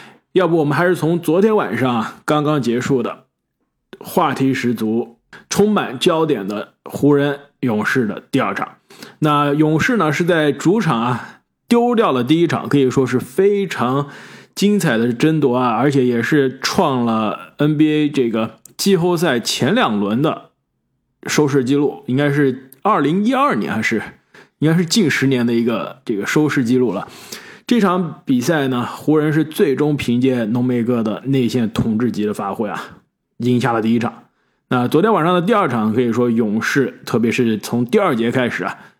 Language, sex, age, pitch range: Chinese, male, 20-39, 125-170 Hz